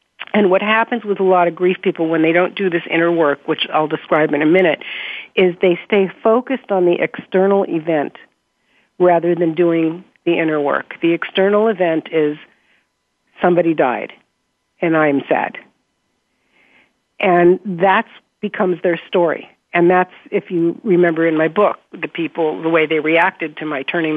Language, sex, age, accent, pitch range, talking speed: English, female, 50-69, American, 165-205 Hz, 165 wpm